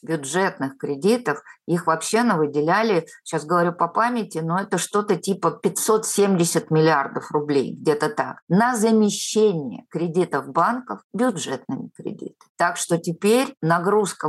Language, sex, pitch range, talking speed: Russian, female, 145-210 Hz, 120 wpm